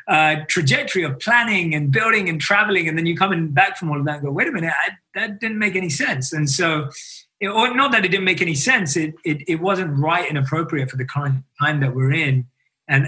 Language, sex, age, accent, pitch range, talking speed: English, male, 30-49, British, 145-185 Hz, 255 wpm